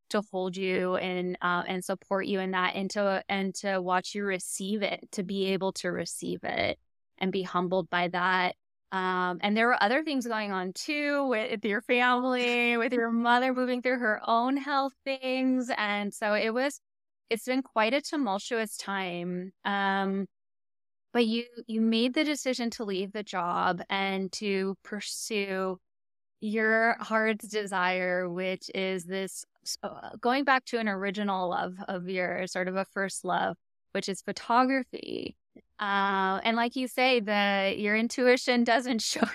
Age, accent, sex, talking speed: 10-29, American, female, 160 wpm